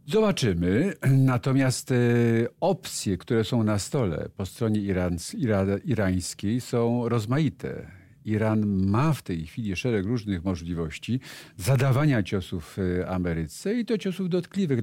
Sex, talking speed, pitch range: male, 110 wpm, 95-125 Hz